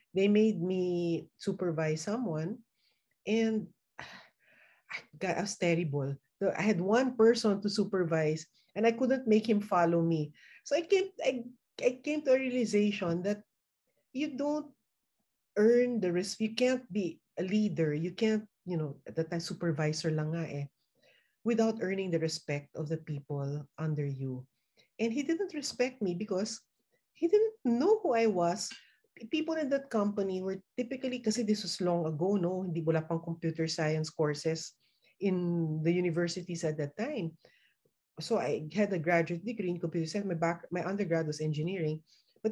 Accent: native